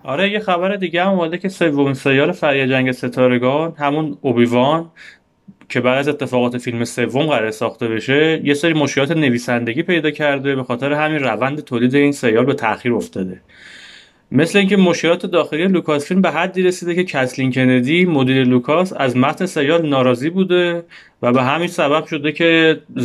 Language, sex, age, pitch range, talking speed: Persian, male, 30-49, 125-170 Hz, 170 wpm